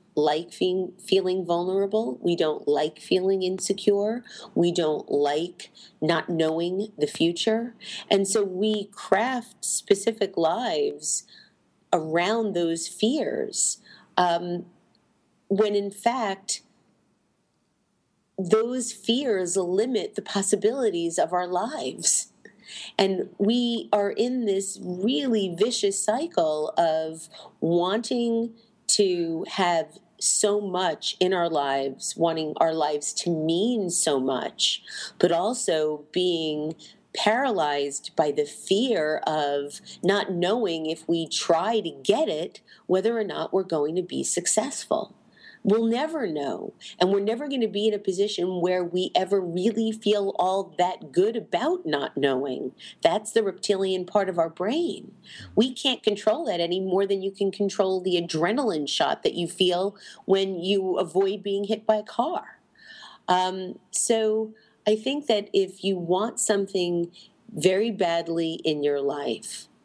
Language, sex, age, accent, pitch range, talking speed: English, female, 40-59, American, 175-215 Hz, 130 wpm